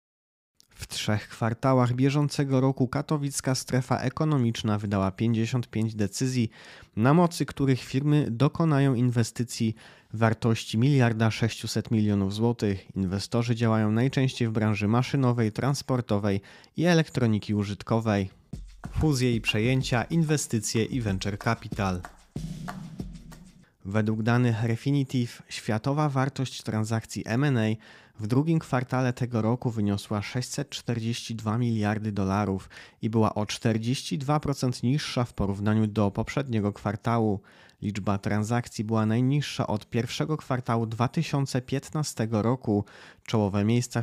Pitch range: 105-130 Hz